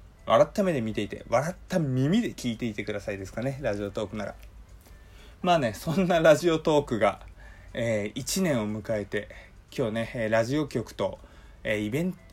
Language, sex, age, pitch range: Japanese, male, 20-39, 105-145 Hz